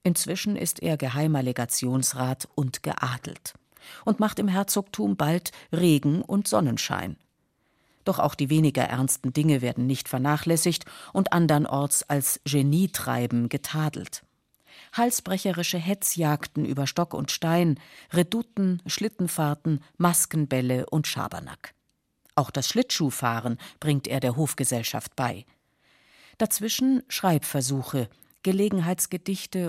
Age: 50-69